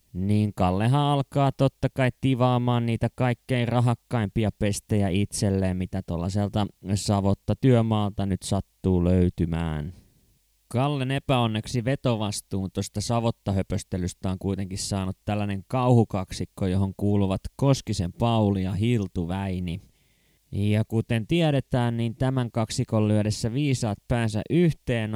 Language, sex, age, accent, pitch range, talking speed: Finnish, male, 20-39, native, 95-120 Hz, 105 wpm